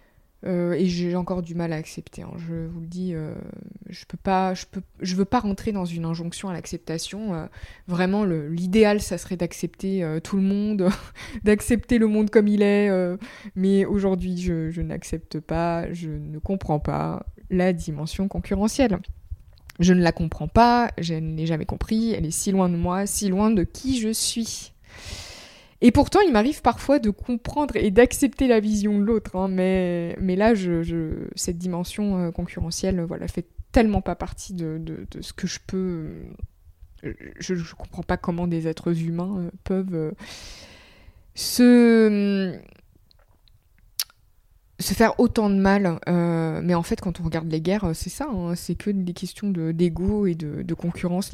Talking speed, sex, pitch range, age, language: 180 wpm, female, 165-205 Hz, 20-39, French